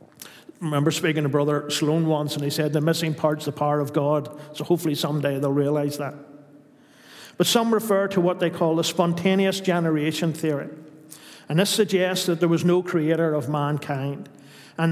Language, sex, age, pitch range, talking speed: English, male, 50-69, 150-180 Hz, 180 wpm